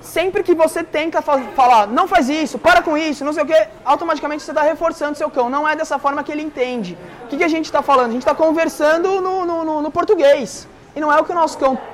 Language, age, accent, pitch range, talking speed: Portuguese, 20-39, Brazilian, 250-320 Hz, 260 wpm